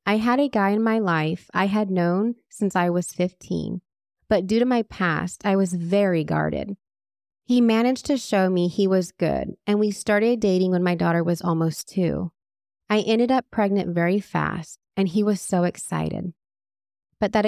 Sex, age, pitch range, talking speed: female, 20-39, 175-220 Hz, 185 wpm